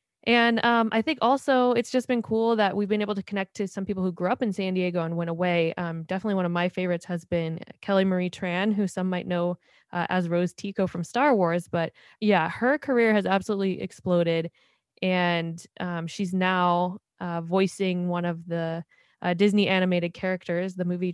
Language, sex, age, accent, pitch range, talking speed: English, female, 20-39, American, 170-200 Hz, 200 wpm